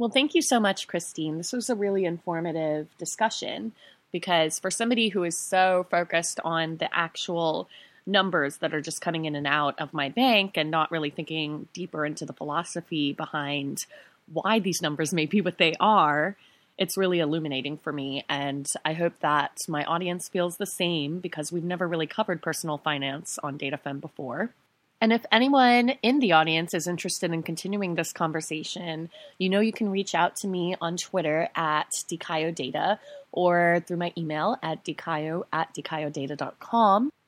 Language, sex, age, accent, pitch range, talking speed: English, female, 20-39, American, 160-200 Hz, 170 wpm